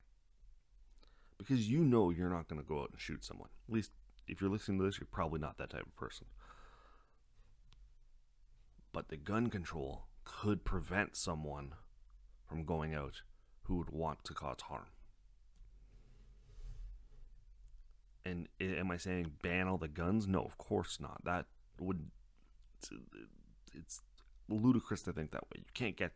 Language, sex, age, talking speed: English, male, 30-49, 150 wpm